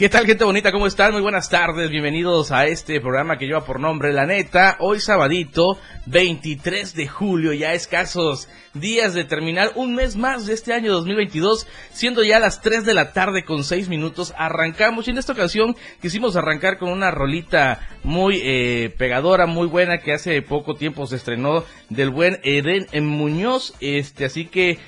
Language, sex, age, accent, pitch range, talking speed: Spanish, male, 30-49, Mexican, 145-190 Hz, 180 wpm